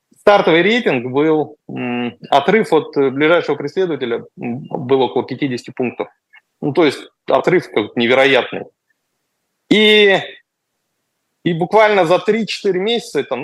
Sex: male